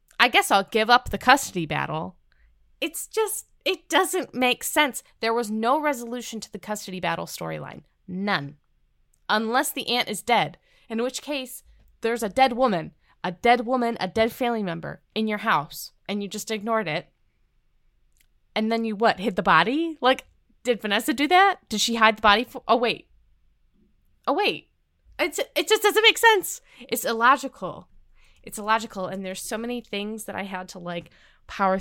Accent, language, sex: American, English, female